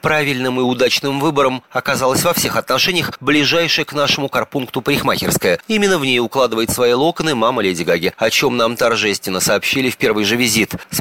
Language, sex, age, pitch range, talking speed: Russian, male, 30-49, 110-150 Hz, 175 wpm